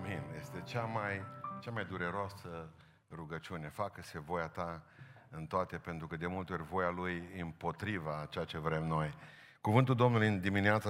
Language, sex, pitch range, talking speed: Romanian, male, 90-120 Hz, 160 wpm